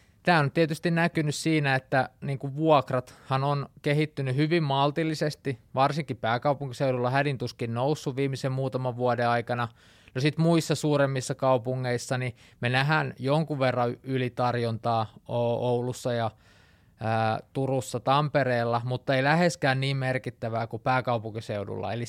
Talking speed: 125 wpm